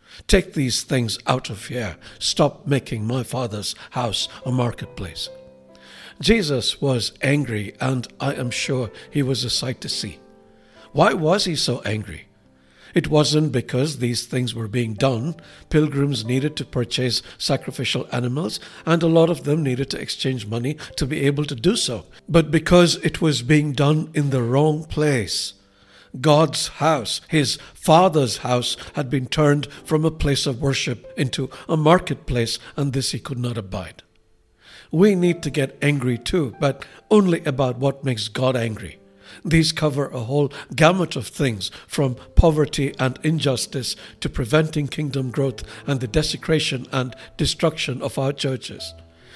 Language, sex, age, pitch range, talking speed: English, male, 60-79, 120-155 Hz, 155 wpm